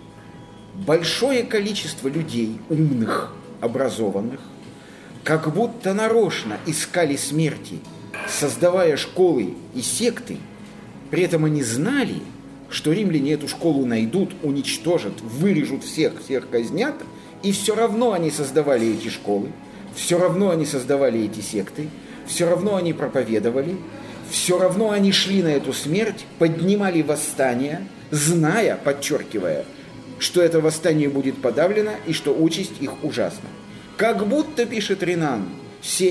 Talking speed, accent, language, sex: 120 wpm, native, Russian, male